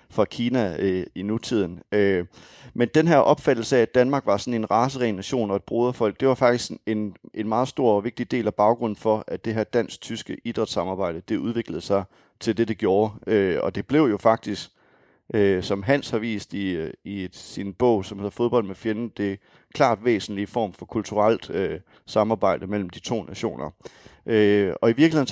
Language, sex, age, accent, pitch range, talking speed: English, male, 30-49, Danish, 100-120 Hz, 195 wpm